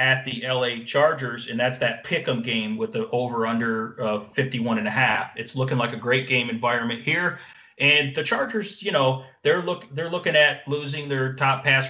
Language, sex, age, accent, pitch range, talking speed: English, male, 40-59, American, 120-140 Hz, 180 wpm